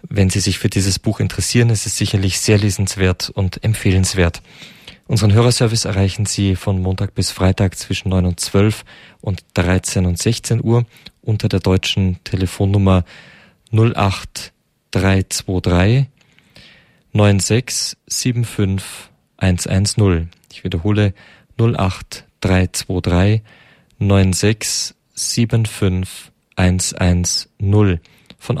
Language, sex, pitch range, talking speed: German, male, 95-110 Hz, 100 wpm